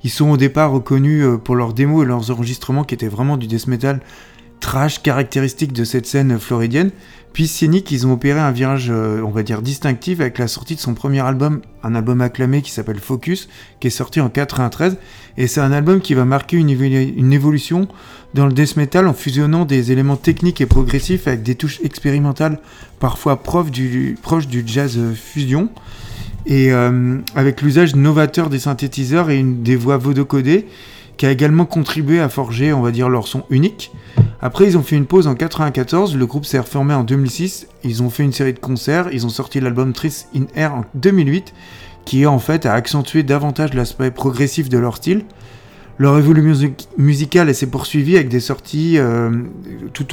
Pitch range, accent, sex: 125-150 Hz, French, male